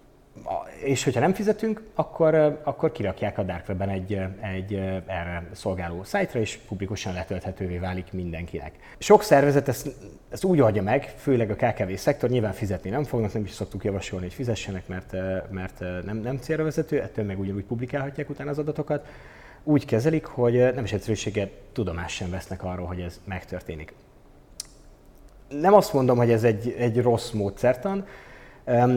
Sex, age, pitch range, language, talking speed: male, 30-49, 95-130 Hz, Hungarian, 155 wpm